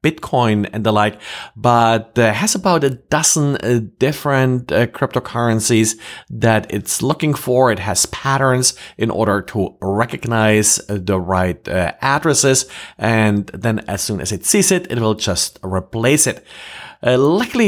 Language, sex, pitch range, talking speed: English, male, 105-135 Hz, 155 wpm